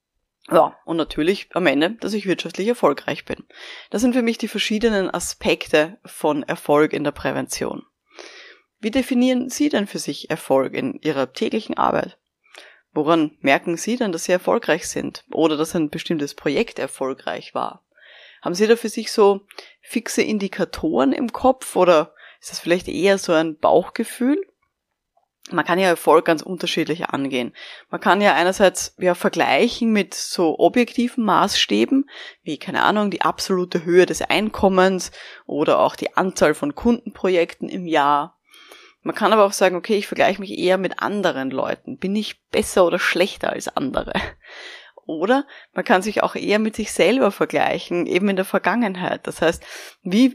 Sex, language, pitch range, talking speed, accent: female, German, 165-230 Hz, 160 wpm, German